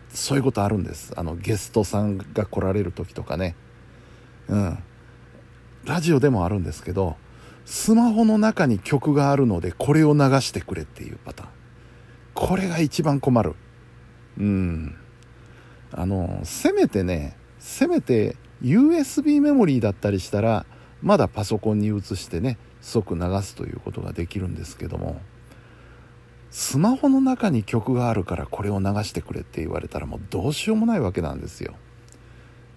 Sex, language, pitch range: male, Japanese, 95-125 Hz